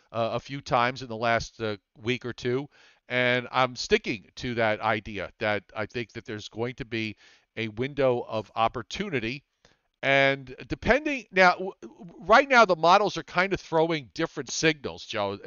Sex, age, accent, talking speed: male, 50-69, American, 160 wpm